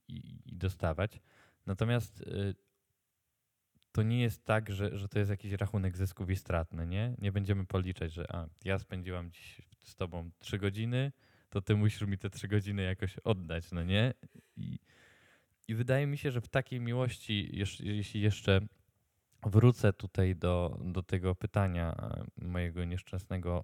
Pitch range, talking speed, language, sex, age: 95-110 Hz, 150 wpm, Polish, male, 20-39